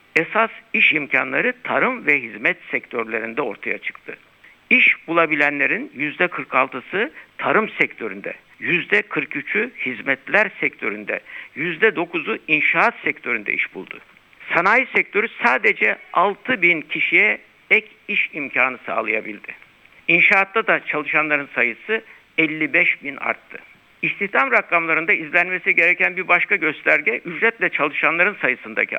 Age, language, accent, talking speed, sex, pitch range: 60-79, Turkish, native, 100 wpm, male, 155-220 Hz